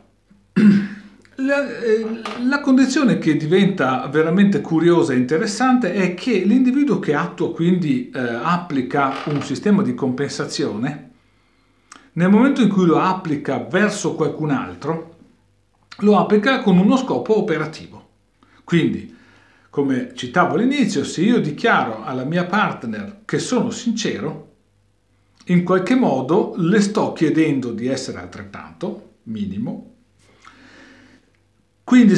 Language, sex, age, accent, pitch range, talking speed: Italian, male, 50-69, native, 150-220 Hz, 110 wpm